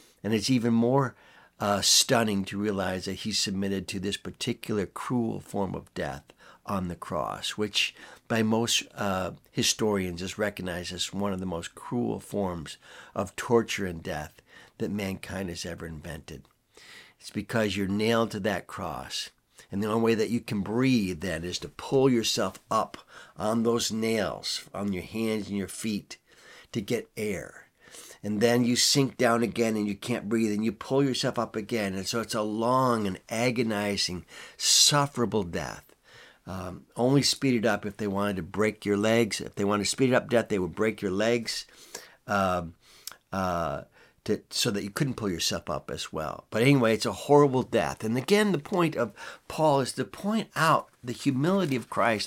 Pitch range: 100-125 Hz